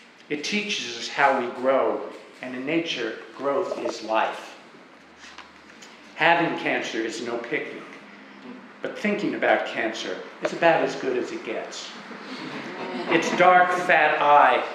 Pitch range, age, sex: 140-175 Hz, 50-69, male